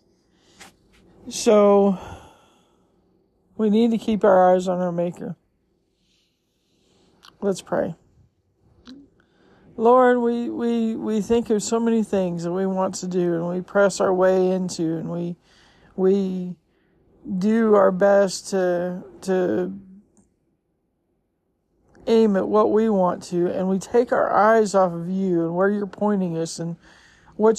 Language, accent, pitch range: English, American, 180-215 Hz